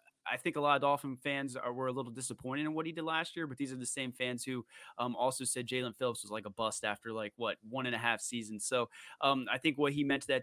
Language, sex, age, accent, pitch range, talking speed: English, male, 20-39, American, 115-130 Hz, 290 wpm